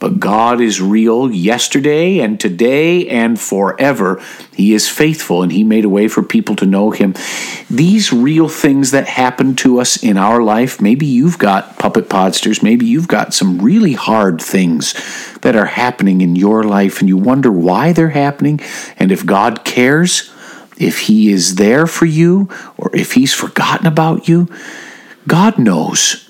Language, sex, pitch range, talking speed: English, male, 95-155 Hz, 170 wpm